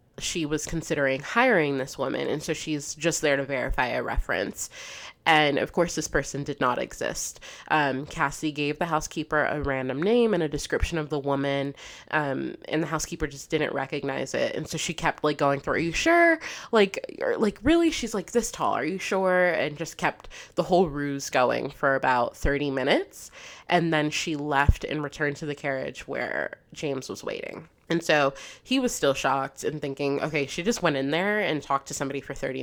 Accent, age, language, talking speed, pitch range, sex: American, 20-39, English, 200 wpm, 140-175 Hz, female